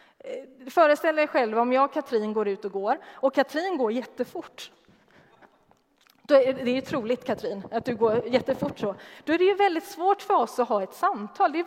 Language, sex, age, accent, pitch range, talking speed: Swedish, female, 30-49, native, 210-275 Hz, 210 wpm